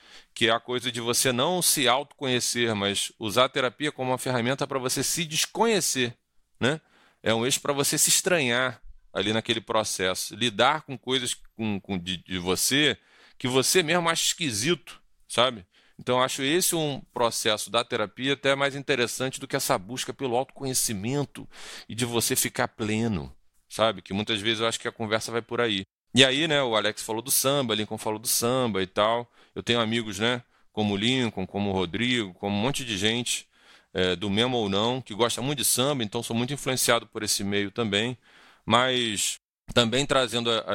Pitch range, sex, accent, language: 105-130 Hz, male, Brazilian, Portuguese